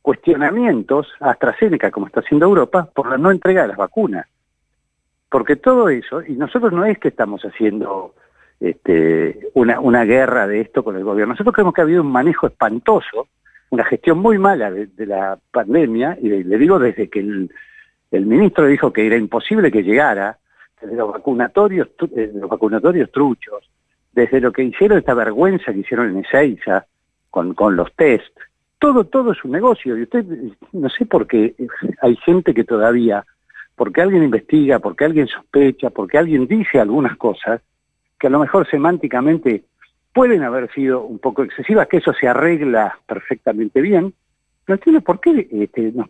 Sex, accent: male, Argentinian